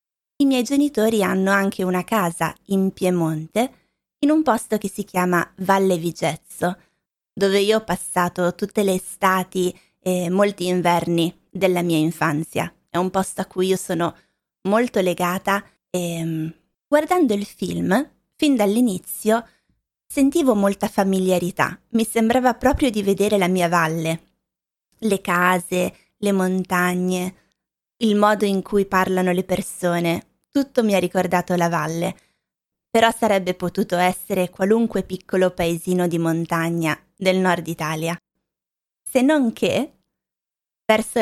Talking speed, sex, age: 130 wpm, female, 20-39